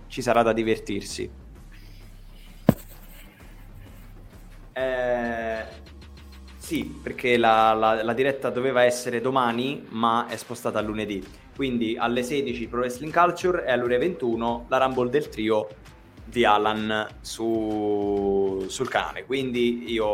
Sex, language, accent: male, Italian, native